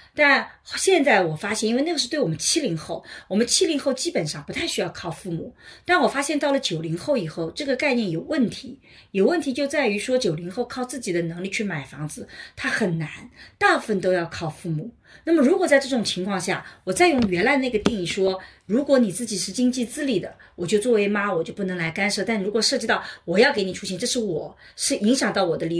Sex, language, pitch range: female, Chinese, 185-265 Hz